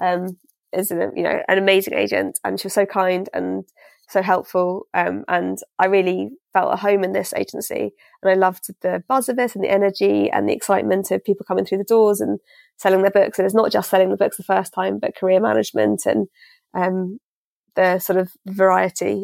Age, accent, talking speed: 20-39, British, 210 wpm